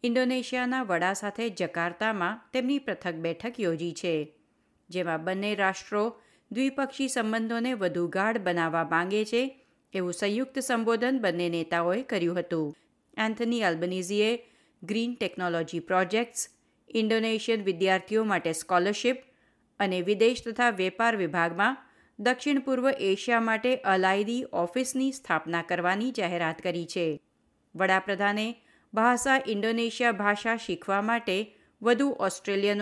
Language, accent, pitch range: Gujarati, native, 180-240 Hz